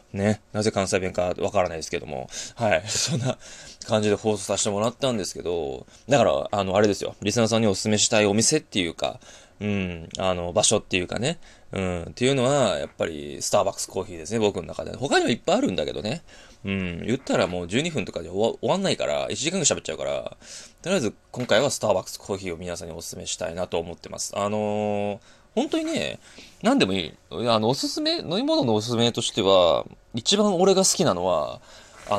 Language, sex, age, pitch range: Japanese, male, 20-39, 100-130 Hz